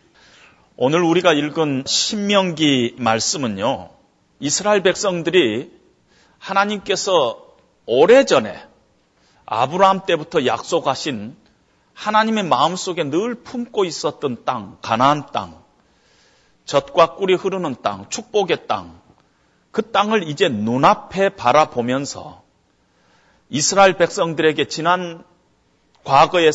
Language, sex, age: Korean, male, 40-59